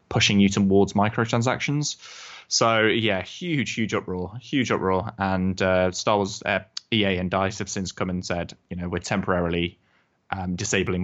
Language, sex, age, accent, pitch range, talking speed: English, male, 10-29, British, 95-110 Hz, 165 wpm